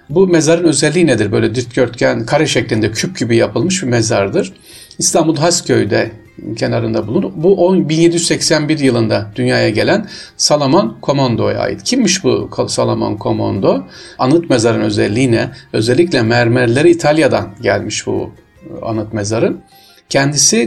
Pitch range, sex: 115-150 Hz, male